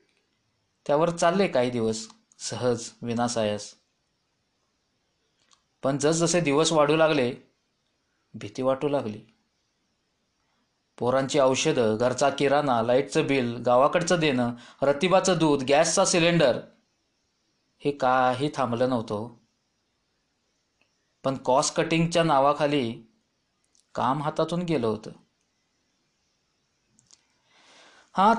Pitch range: 125-170 Hz